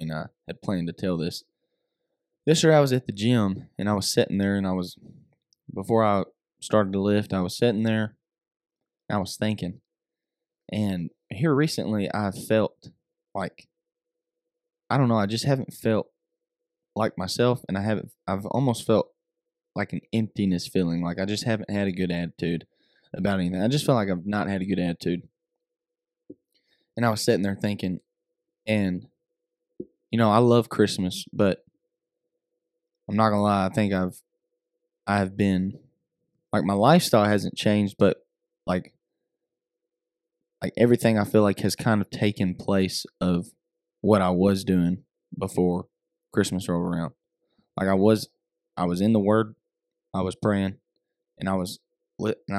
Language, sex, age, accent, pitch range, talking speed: English, male, 20-39, American, 95-165 Hz, 165 wpm